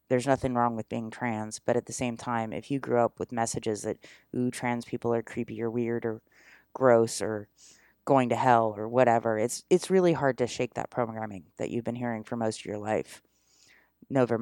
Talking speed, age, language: 210 wpm, 30-49, English